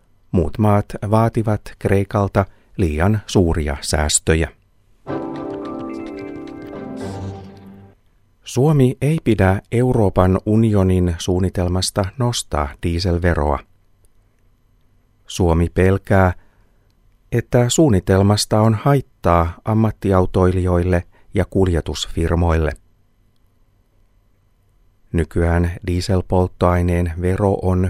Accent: native